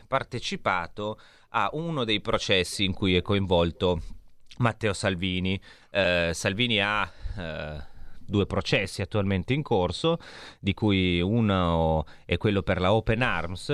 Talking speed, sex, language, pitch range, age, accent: 125 wpm, male, Italian, 90-110 Hz, 30-49, native